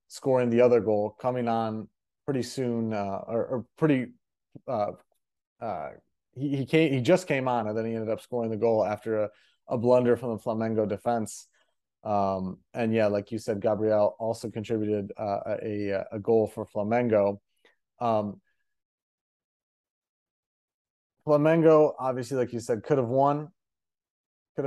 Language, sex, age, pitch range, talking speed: English, male, 30-49, 110-130 Hz, 150 wpm